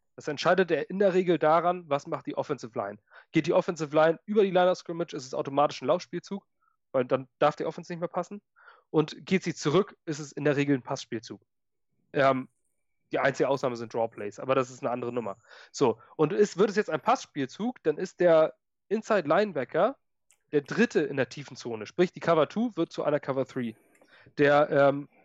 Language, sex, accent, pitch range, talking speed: German, male, German, 135-180 Hz, 205 wpm